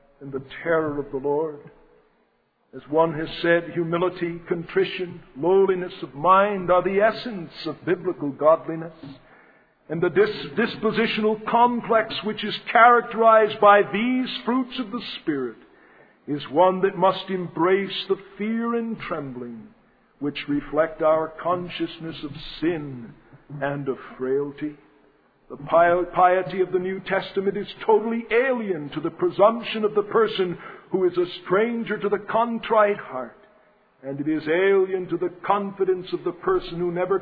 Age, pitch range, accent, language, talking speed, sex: 60-79, 155-220 Hz, American, English, 140 wpm, male